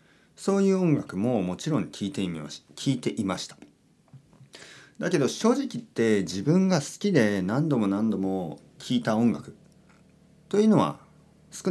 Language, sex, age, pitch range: Japanese, male, 40-59, 115-195 Hz